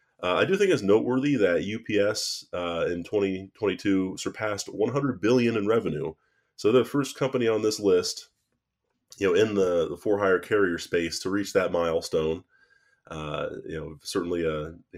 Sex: male